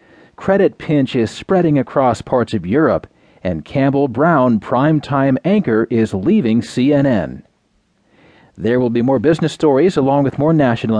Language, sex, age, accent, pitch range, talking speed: English, male, 40-59, American, 115-155 Hz, 140 wpm